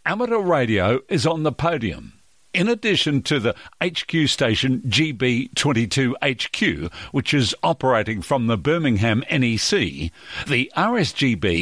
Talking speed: 115 wpm